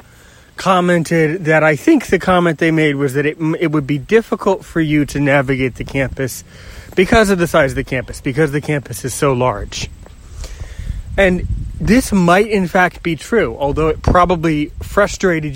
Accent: American